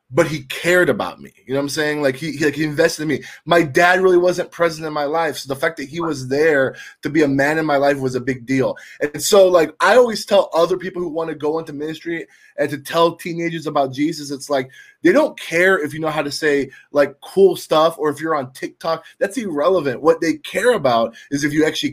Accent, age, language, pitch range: American, 20-39, English, 145-185 Hz